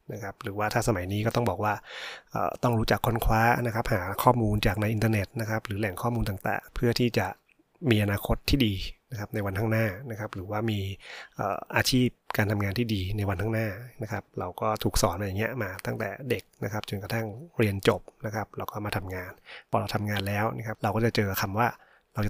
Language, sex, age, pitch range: Thai, male, 20-39, 100-115 Hz